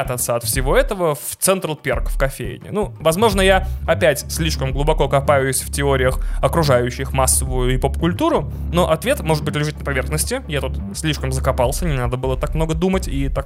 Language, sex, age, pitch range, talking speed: Russian, male, 20-39, 100-165 Hz, 180 wpm